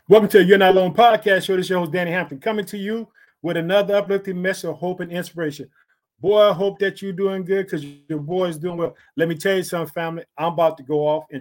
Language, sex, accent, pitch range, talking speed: English, male, American, 155-180 Hz, 260 wpm